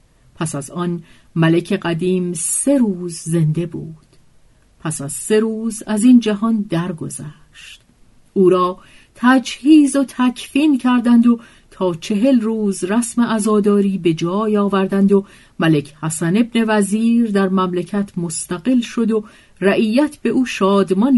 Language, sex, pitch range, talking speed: Persian, female, 165-225 Hz, 130 wpm